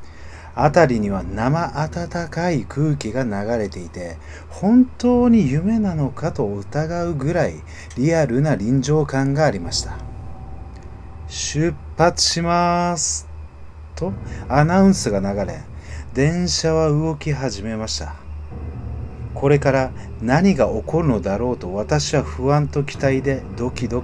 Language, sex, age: Japanese, male, 40-59